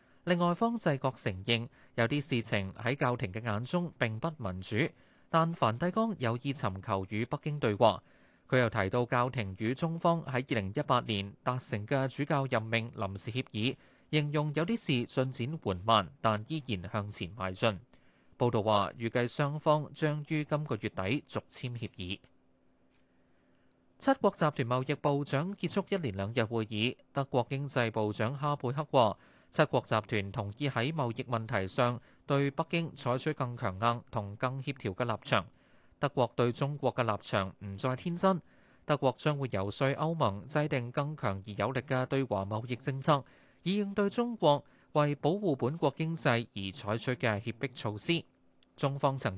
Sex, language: male, Chinese